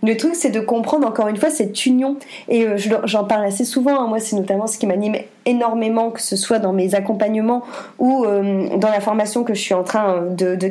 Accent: French